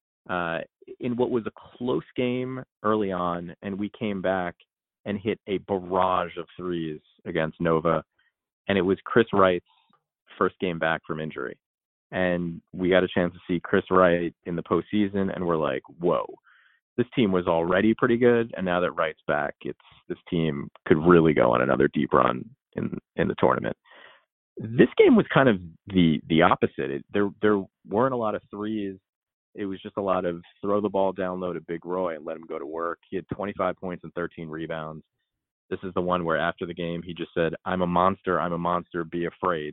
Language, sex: English, male